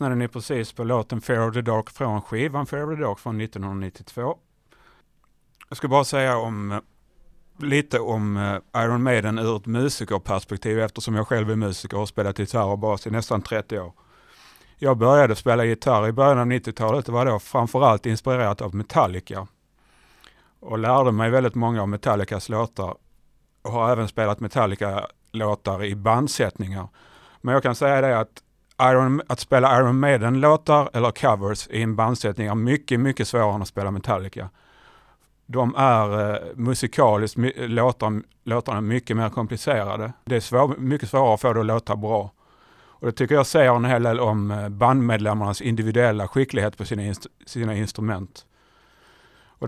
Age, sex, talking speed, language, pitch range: 30-49, male, 170 wpm, Swedish, 105-125 Hz